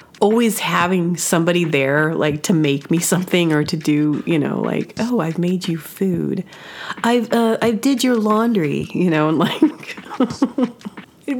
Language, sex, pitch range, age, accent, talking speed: English, female, 150-190 Hz, 30-49, American, 165 wpm